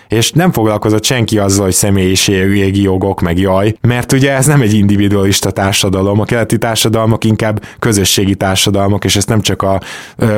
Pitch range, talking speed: 100-130 Hz, 170 wpm